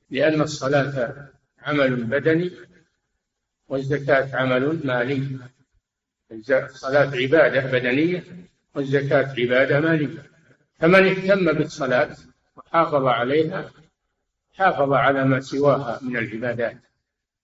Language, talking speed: Arabic, 85 wpm